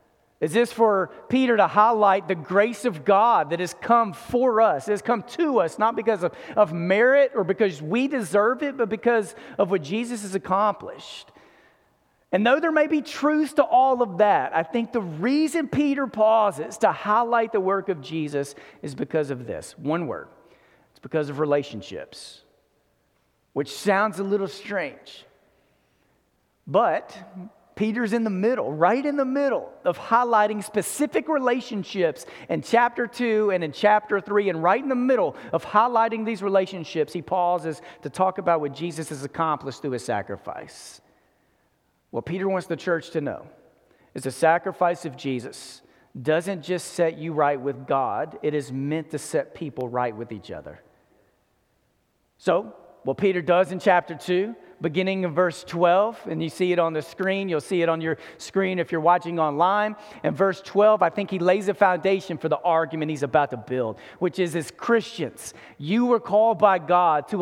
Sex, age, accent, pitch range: male, 40-59, American, 160-220 Hz